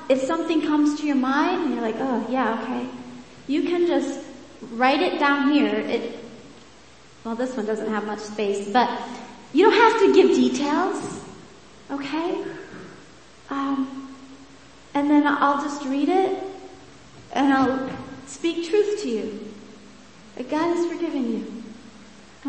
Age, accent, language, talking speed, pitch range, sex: 40-59, American, English, 145 wpm, 230-300 Hz, female